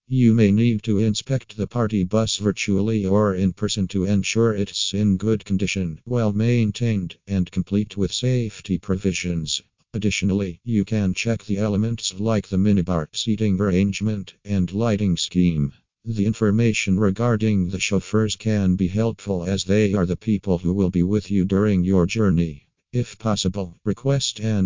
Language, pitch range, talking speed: English, 95-110 Hz, 155 wpm